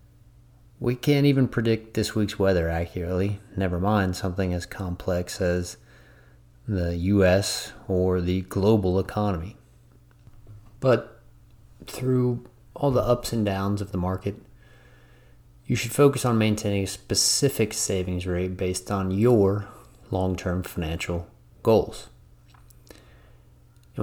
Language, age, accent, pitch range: English, 30-49, American, 90-110 Hz